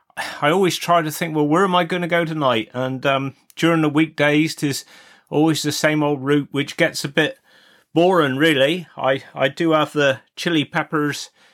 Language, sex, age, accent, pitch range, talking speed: English, male, 30-49, British, 140-170 Hz, 190 wpm